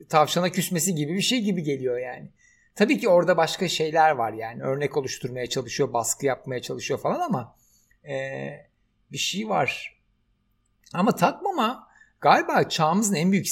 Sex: male